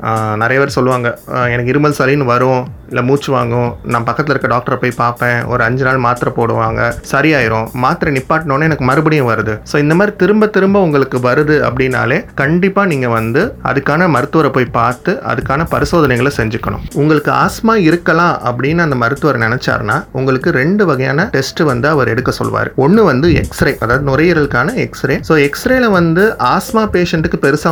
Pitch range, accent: 120-170 Hz, native